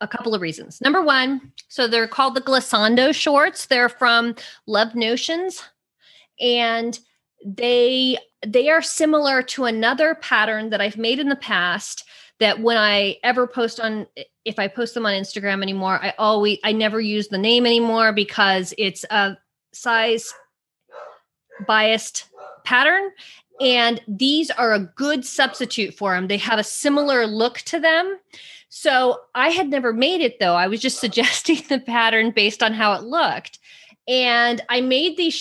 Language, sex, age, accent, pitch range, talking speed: English, female, 30-49, American, 215-270 Hz, 160 wpm